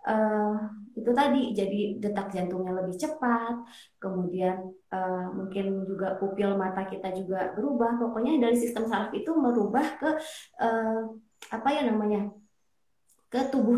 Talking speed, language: 130 wpm, Indonesian